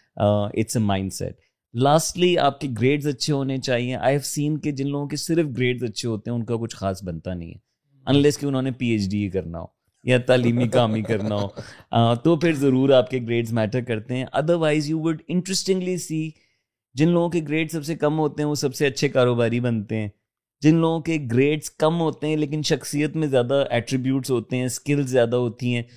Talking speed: 215 wpm